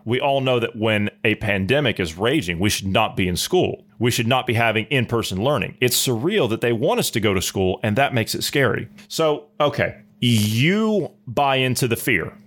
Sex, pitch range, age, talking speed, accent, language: male, 115-150 Hz, 30-49, 210 wpm, American, English